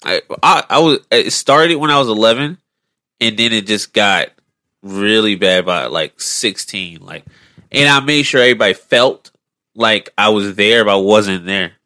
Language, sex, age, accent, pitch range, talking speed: English, male, 20-39, American, 95-115 Hz, 175 wpm